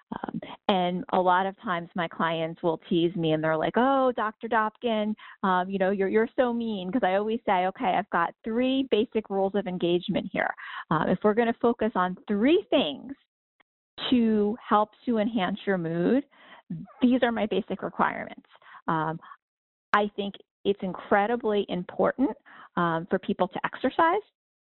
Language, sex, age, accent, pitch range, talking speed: English, female, 40-59, American, 180-225 Hz, 165 wpm